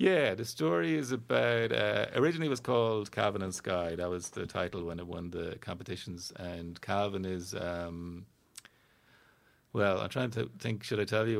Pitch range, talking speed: 85-100 Hz, 185 wpm